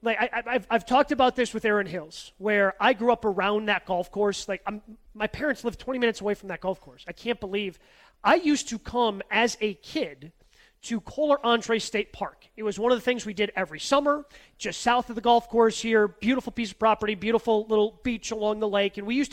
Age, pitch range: 30-49, 205-245 Hz